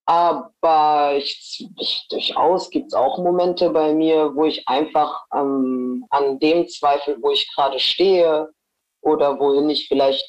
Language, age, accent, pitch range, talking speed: German, 20-39, German, 145-190 Hz, 145 wpm